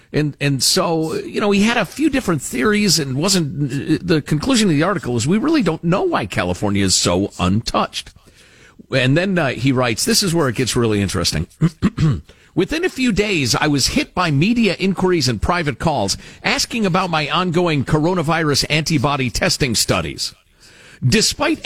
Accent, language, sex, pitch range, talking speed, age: American, English, male, 135-200 Hz, 170 wpm, 50-69